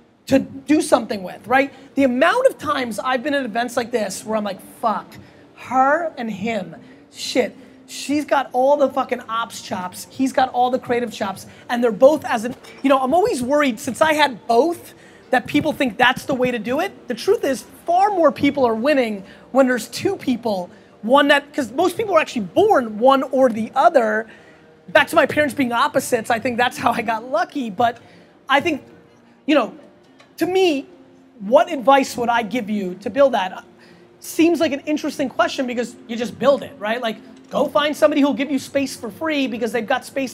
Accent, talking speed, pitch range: American, 205 wpm, 235-280 Hz